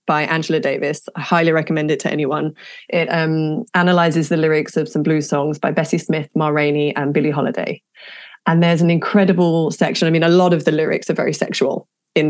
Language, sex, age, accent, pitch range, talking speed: English, female, 30-49, British, 160-195 Hz, 205 wpm